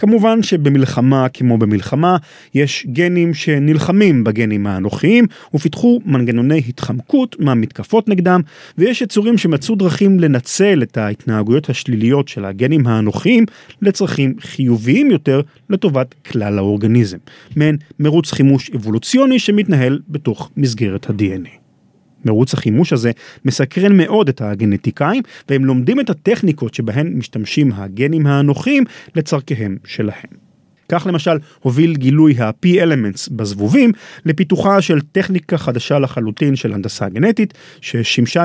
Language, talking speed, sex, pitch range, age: Hebrew, 110 wpm, male, 120-180 Hz, 30-49